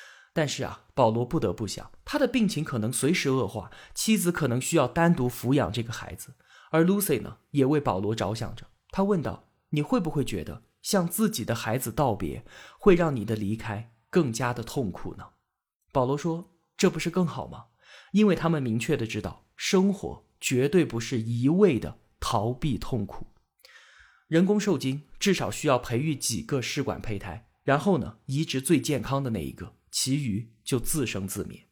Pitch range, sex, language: 115-160 Hz, male, Chinese